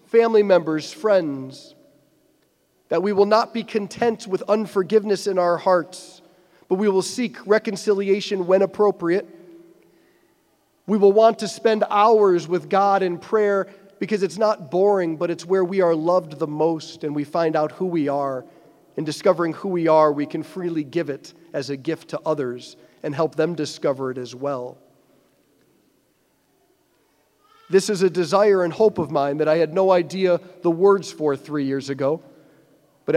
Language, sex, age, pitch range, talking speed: English, male, 40-59, 155-195 Hz, 165 wpm